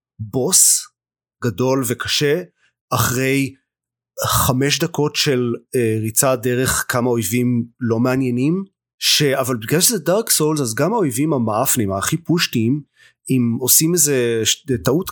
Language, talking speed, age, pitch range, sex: Hebrew, 120 wpm, 30-49, 115-140 Hz, male